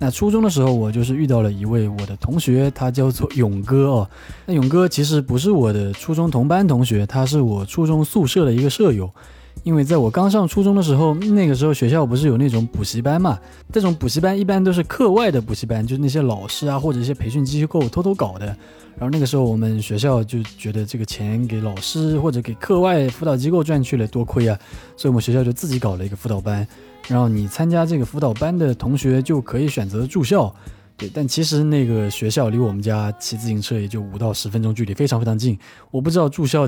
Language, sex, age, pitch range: Chinese, male, 20-39, 110-155 Hz